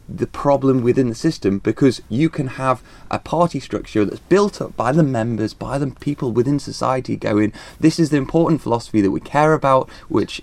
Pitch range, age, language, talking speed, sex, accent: 105-145 Hz, 20-39, English, 195 wpm, male, British